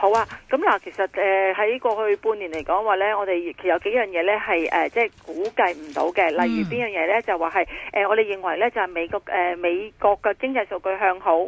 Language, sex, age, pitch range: Chinese, female, 30-49, 190-245 Hz